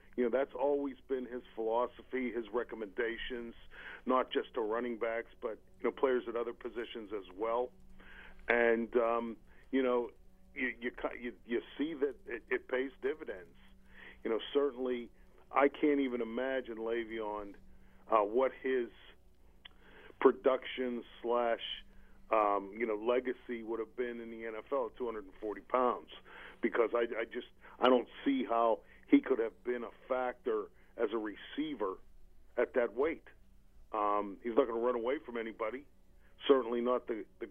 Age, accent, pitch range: 50-69, American, 115-130 Hz